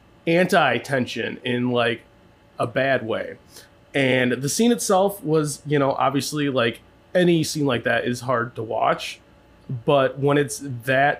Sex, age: male, 20-39